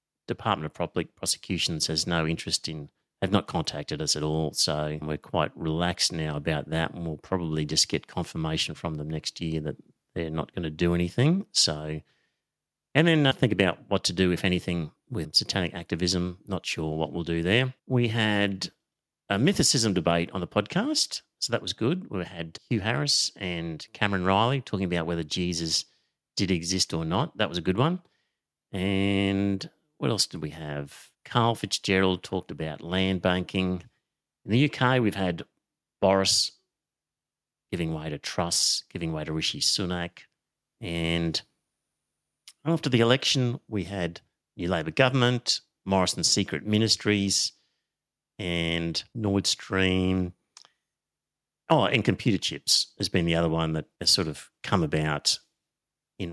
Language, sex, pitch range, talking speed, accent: English, male, 80-105 Hz, 160 wpm, Australian